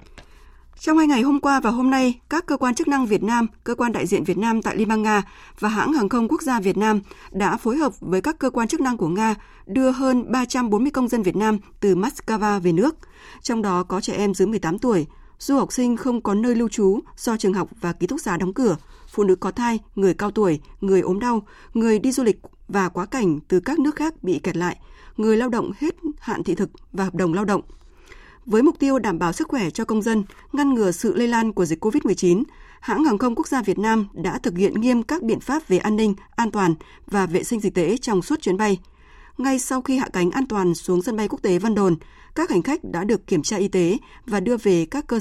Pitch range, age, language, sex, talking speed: 190-250 Hz, 20-39, Vietnamese, female, 250 wpm